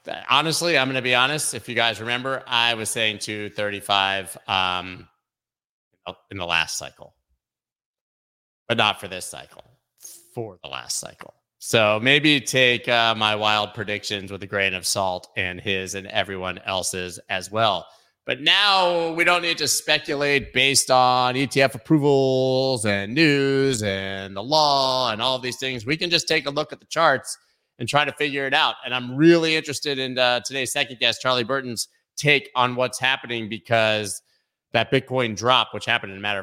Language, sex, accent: English, male, American